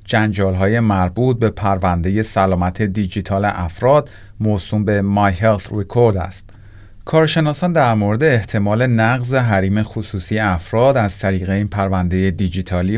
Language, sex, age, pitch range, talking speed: Persian, male, 40-59, 95-115 Hz, 125 wpm